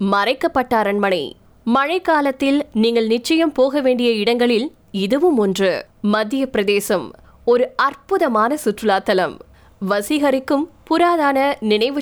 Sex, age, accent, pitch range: female, 20-39, native, 225-280 Hz